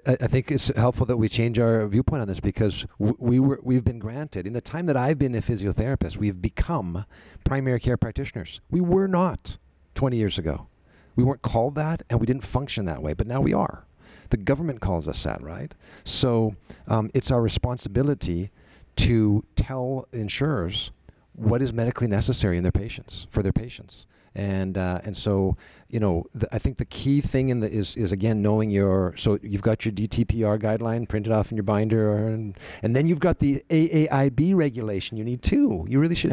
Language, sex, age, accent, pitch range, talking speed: English, male, 50-69, American, 100-125 Hz, 195 wpm